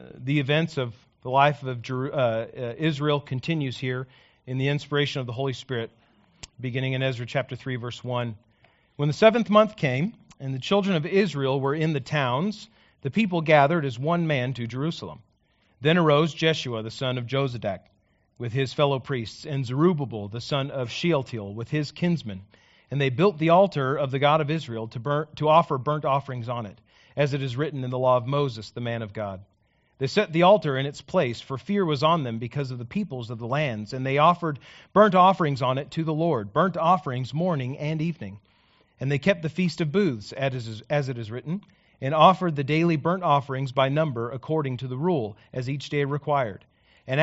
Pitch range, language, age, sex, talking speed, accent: 125-155 Hz, English, 40-59, male, 205 wpm, American